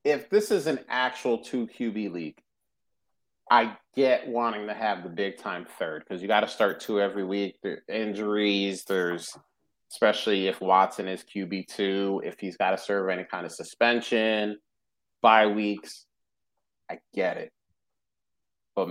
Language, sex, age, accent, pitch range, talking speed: English, male, 30-49, American, 95-115 Hz, 155 wpm